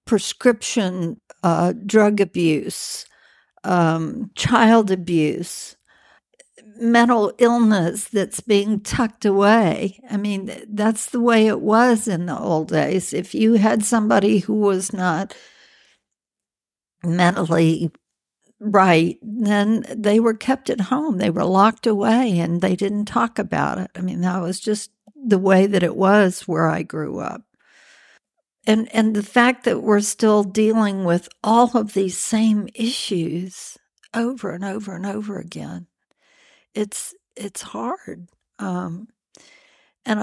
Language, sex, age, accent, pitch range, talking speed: English, female, 60-79, American, 180-220 Hz, 130 wpm